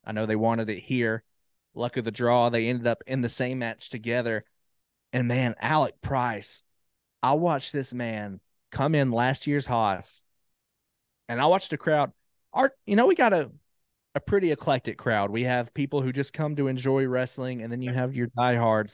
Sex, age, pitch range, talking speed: male, 20-39, 115-135 Hz, 190 wpm